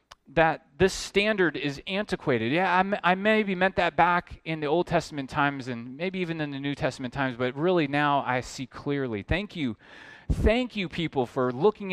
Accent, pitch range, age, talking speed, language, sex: American, 105-155 Hz, 30-49, 190 wpm, English, male